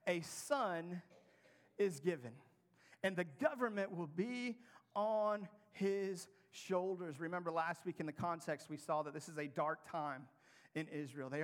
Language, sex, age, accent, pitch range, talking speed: English, male, 40-59, American, 150-185 Hz, 150 wpm